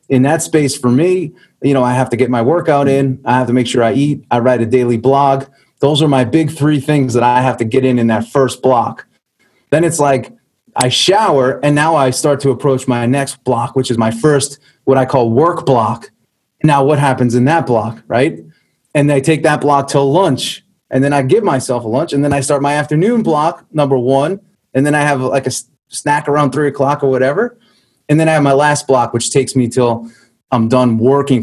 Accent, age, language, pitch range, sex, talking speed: American, 30-49, English, 125-150 Hz, male, 230 wpm